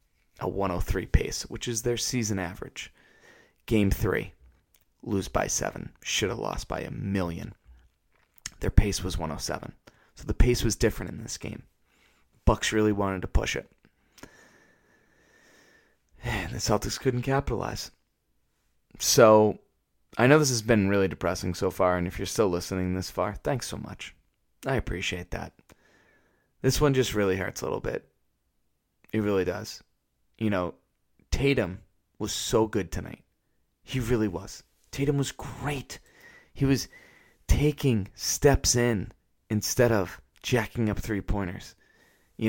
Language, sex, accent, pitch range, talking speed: English, male, American, 90-130 Hz, 140 wpm